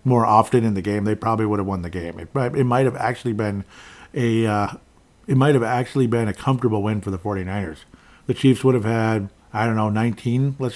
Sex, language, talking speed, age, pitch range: male, English, 230 wpm, 40-59, 95-125 Hz